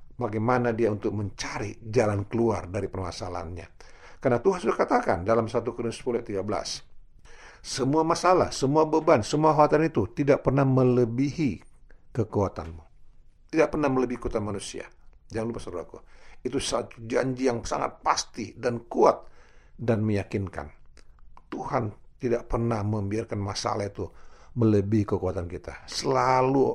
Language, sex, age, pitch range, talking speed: Indonesian, male, 50-69, 100-135 Hz, 125 wpm